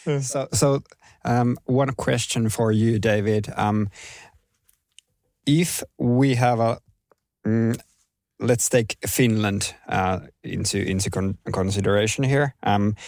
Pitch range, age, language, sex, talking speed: 95-115 Hz, 20-39, Finnish, male, 110 wpm